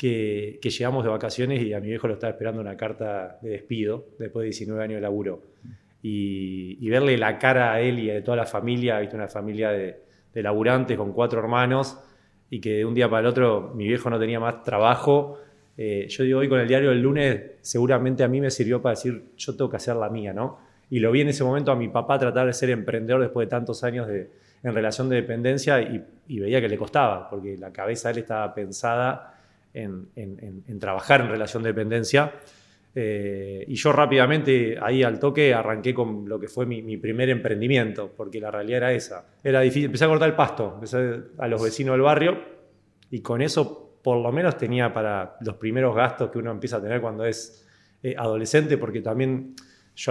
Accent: Argentinian